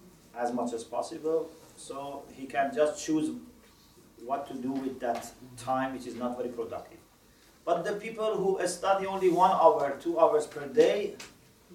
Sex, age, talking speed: male, 40-59, 165 wpm